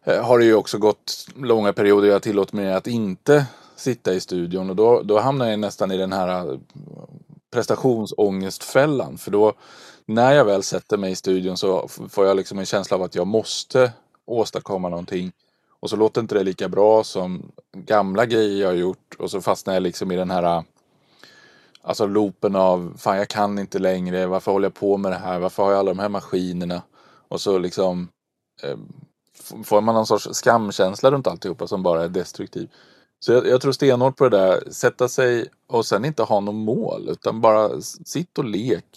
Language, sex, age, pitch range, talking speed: Swedish, male, 20-39, 95-125 Hz, 195 wpm